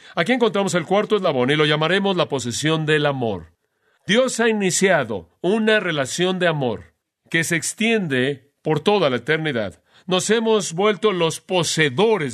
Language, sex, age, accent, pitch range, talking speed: Spanish, male, 40-59, Mexican, 140-190 Hz, 150 wpm